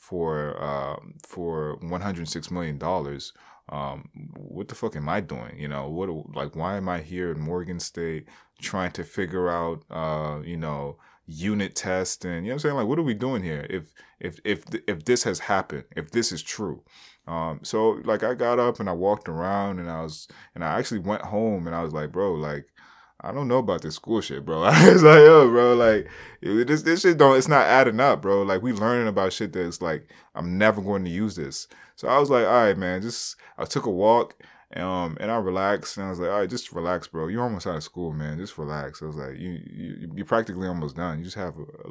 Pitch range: 80-110 Hz